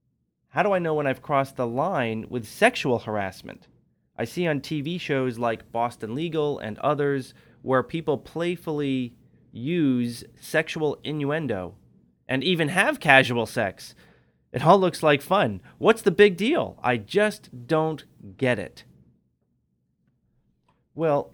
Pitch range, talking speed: 110-145 Hz, 135 wpm